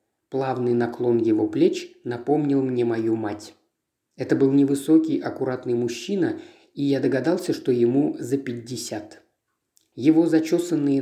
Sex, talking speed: male, 120 wpm